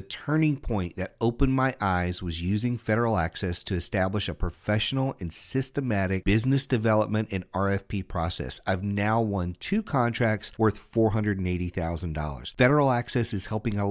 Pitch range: 95-130 Hz